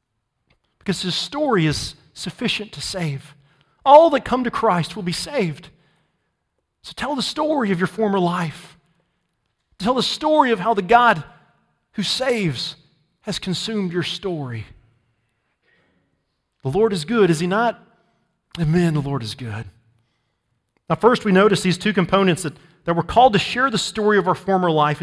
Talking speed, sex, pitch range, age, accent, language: 160 wpm, male, 140-205 Hz, 40-59, American, English